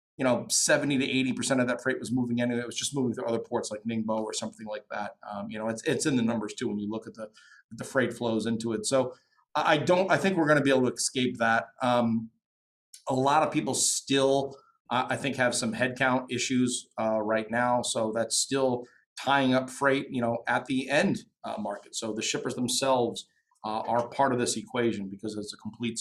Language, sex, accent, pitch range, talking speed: English, male, American, 110-130 Hz, 230 wpm